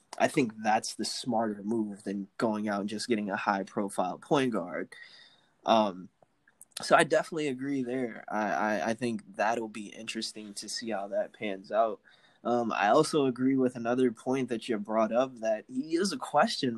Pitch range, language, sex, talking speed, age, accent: 115-145 Hz, English, male, 180 wpm, 20-39, American